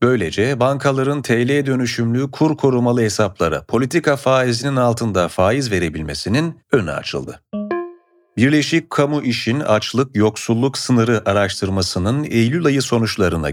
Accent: native